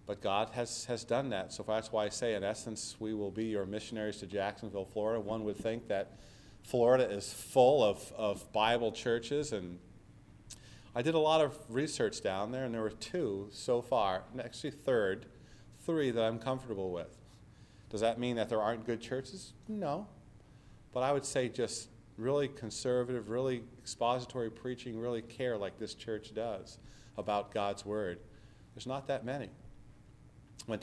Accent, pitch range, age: American, 105-125 Hz, 40-59